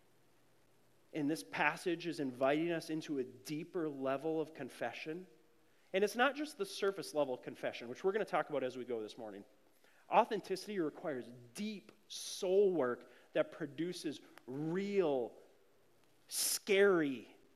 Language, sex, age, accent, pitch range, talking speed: English, male, 30-49, American, 145-215 Hz, 140 wpm